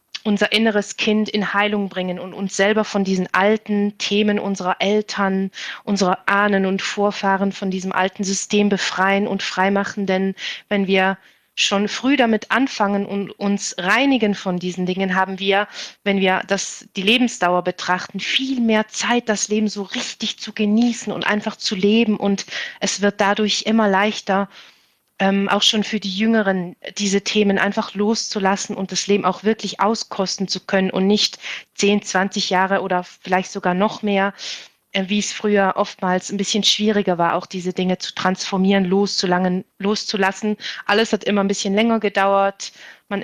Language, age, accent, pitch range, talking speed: German, 30-49, German, 190-210 Hz, 165 wpm